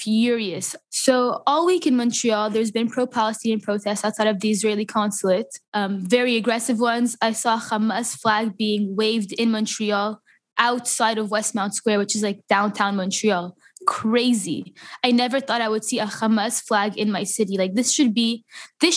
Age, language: 10-29, English